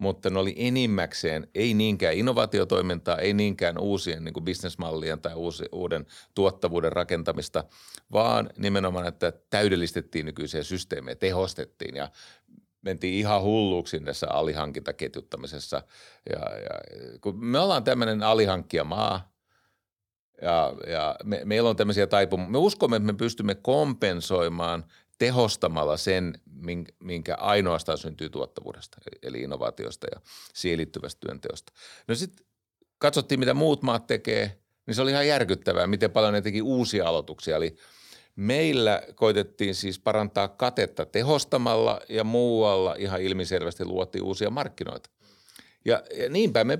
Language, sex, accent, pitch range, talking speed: Finnish, male, native, 90-115 Hz, 125 wpm